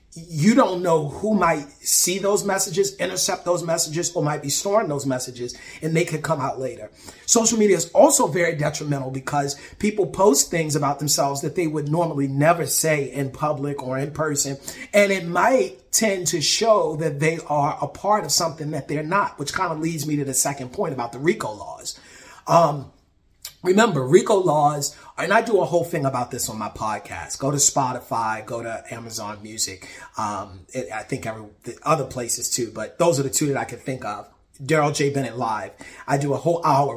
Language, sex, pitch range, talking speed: English, male, 130-165 Hz, 200 wpm